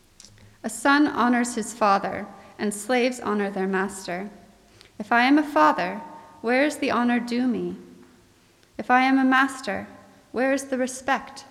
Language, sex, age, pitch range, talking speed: English, female, 30-49, 205-275 Hz, 155 wpm